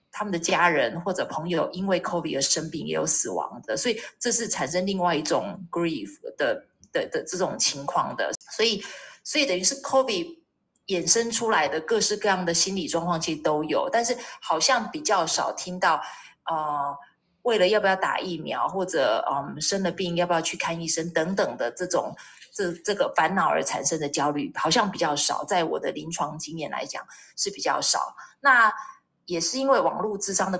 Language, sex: Chinese, female